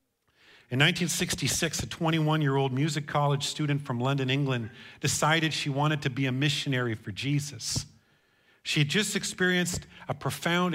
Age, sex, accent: 40-59, male, American